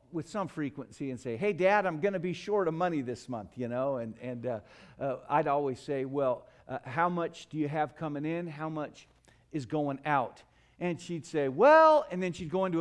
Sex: male